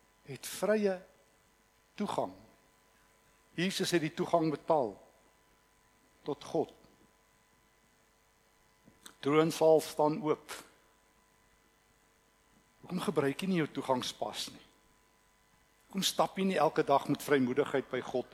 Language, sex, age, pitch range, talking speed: English, male, 60-79, 125-160 Hz, 100 wpm